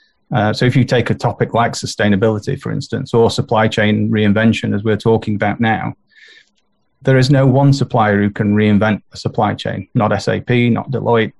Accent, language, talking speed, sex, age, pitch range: British, English, 185 wpm, male, 30-49, 105-120 Hz